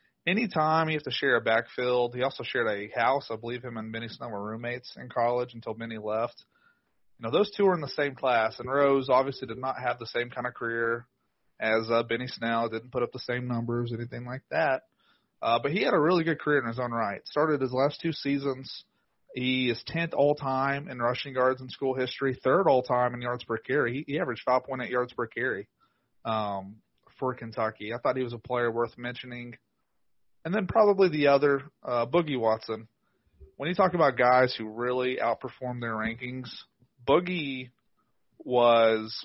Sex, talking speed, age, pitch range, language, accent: male, 195 wpm, 30-49, 115-140 Hz, English, American